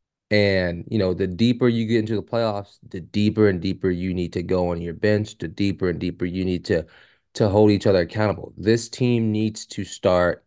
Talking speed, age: 220 wpm, 20-39